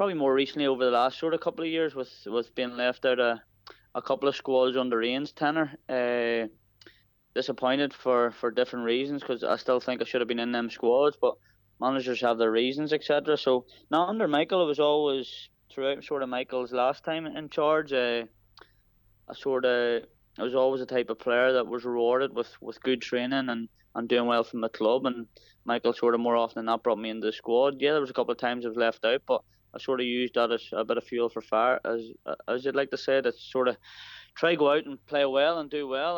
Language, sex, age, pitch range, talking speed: English, male, 20-39, 115-135 Hz, 235 wpm